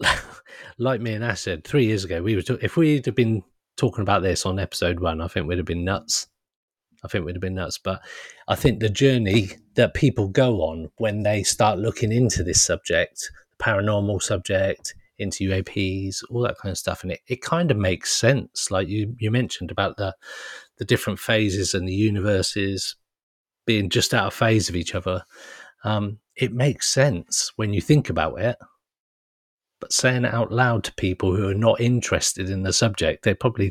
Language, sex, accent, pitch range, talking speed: English, male, British, 95-125 Hz, 200 wpm